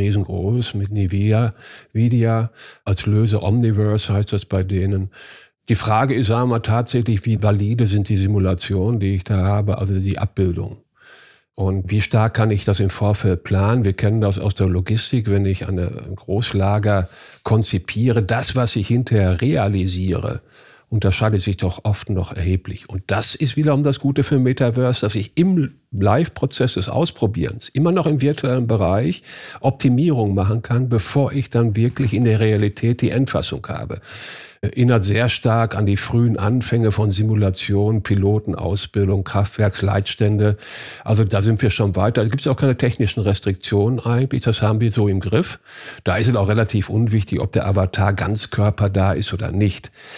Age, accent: 50-69, German